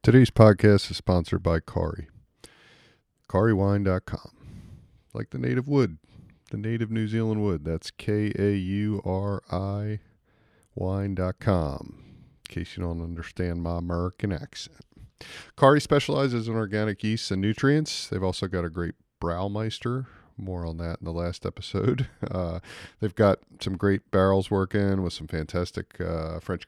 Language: English